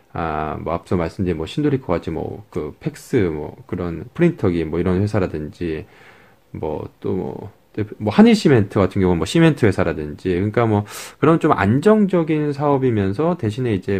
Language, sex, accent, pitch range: Korean, male, native, 90-130 Hz